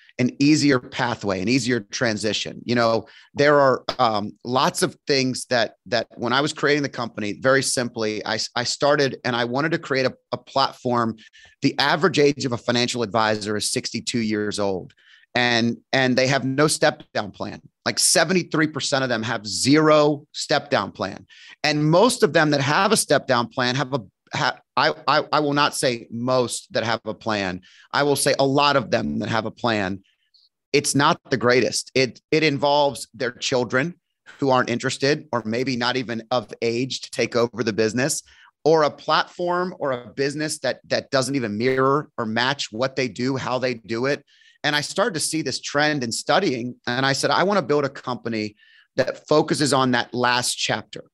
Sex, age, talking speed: male, 30-49, 195 wpm